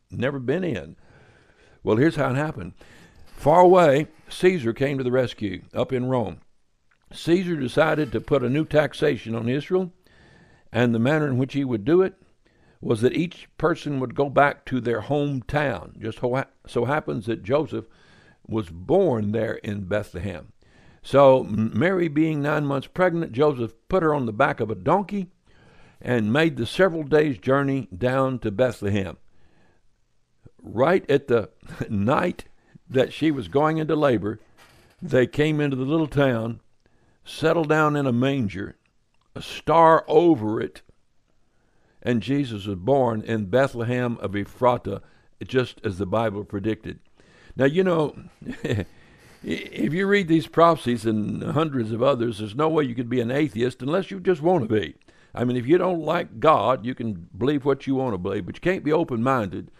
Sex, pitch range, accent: male, 115-155 Hz, American